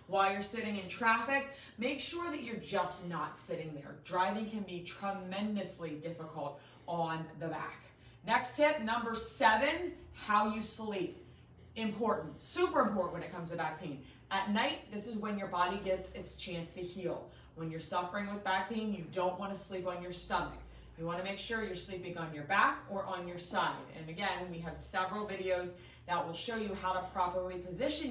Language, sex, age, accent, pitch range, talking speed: English, female, 30-49, American, 160-210 Hz, 195 wpm